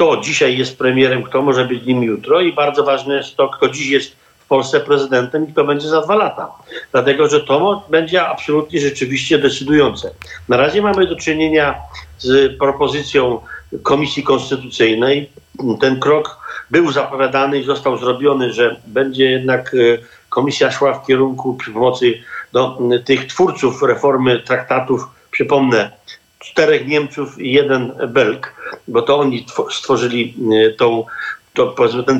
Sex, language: male, Polish